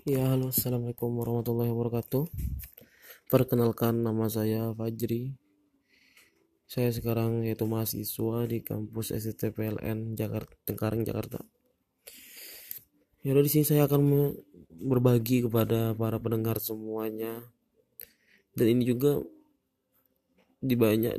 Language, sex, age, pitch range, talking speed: Indonesian, male, 20-39, 110-135 Hz, 95 wpm